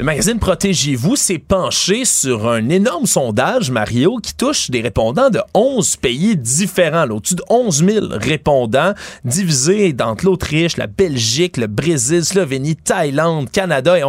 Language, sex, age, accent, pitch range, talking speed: French, male, 30-49, Canadian, 135-190 Hz, 150 wpm